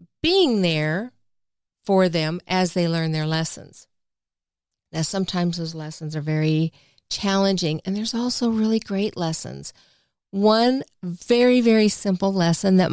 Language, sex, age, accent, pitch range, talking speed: English, female, 50-69, American, 170-225 Hz, 130 wpm